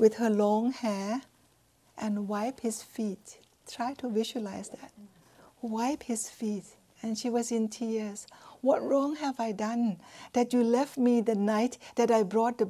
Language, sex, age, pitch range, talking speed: English, female, 60-79, 210-250 Hz, 165 wpm